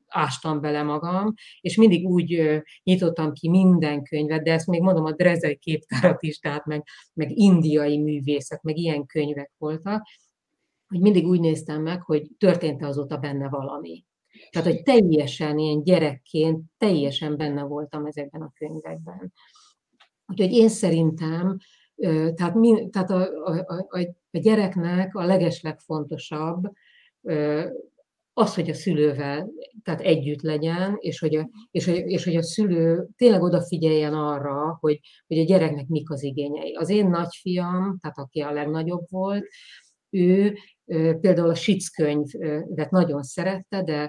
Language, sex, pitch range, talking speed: Hungarian, female, 150-185 Hz, 130 wpm